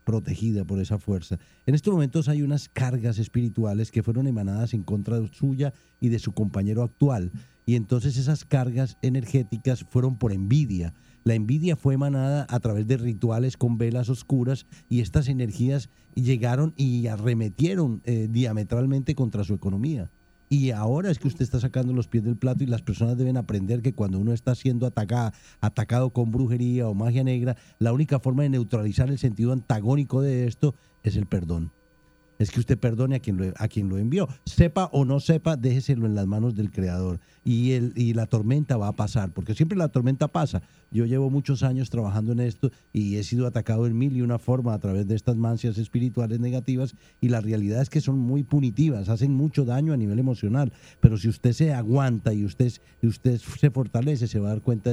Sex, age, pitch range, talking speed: male, 50-69, 110-130 Hz, 195 wpm